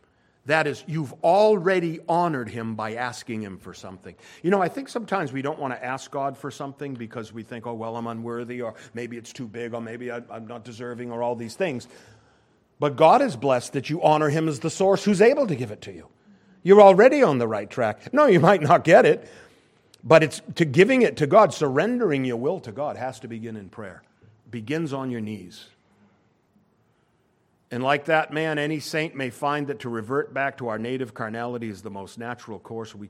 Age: 50-69